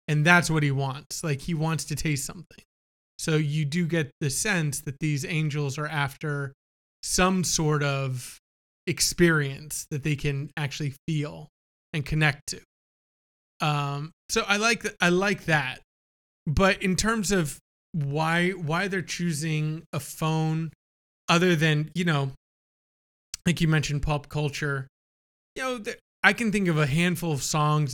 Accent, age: American, 20-39